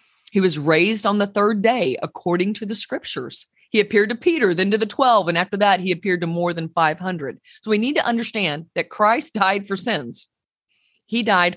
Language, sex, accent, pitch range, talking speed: English, female, American, 170-225 Hz, 205 wpm